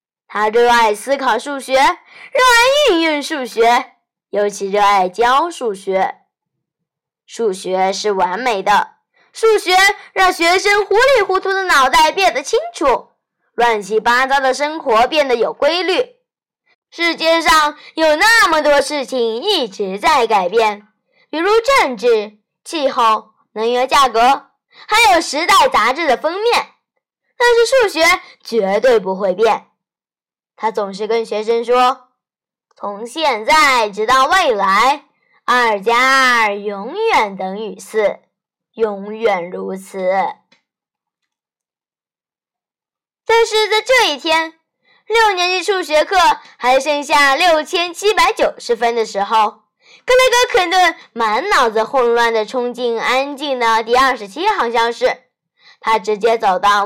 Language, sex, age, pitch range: Chinese, female, 10-29, 220-350 Hz